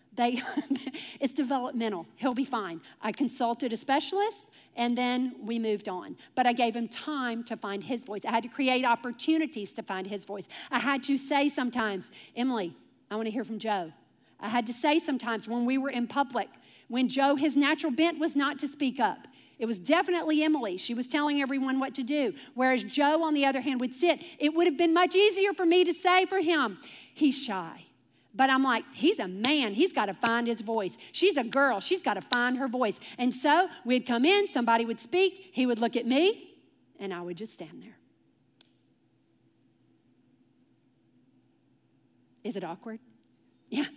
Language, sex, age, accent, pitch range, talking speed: English, female, 50-69, American, 240-320 Hz, 190 wpm